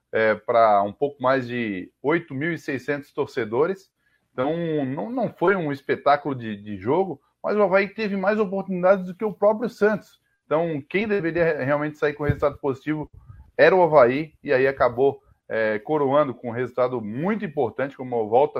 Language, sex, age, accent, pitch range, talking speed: Portuguese, male, 20-39, Brazilian, 135-175 Hz, 160 wpm